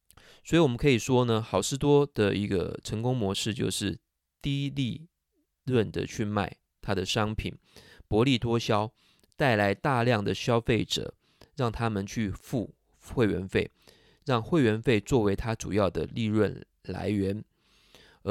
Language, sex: Chinese, male